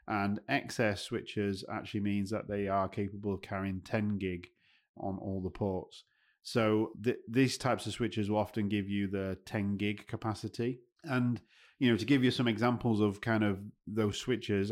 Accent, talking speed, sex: British, 180 wpm, male